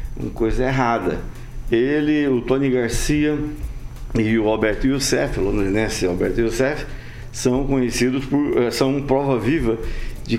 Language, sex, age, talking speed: Portuguese, male, 50-69, 120 wpm